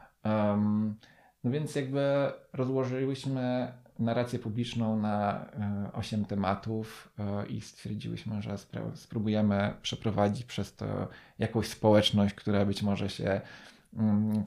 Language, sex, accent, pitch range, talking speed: Polish, male, native, 105-115 Hz, 110 wpm